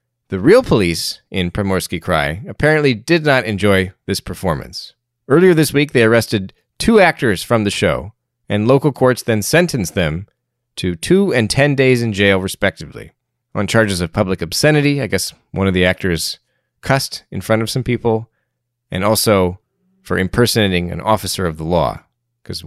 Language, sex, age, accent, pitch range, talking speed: English, male, 30-49, American, 90-125 Hz, 165 wpm